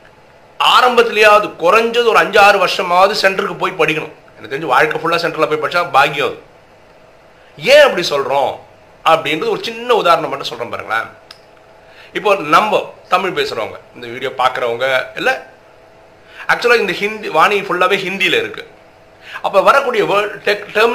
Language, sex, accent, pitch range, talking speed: Tamil, male, native, 155-240 Hz, 80 wpm